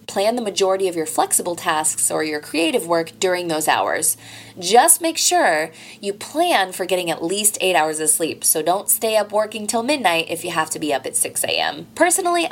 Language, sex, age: English, female, 20-39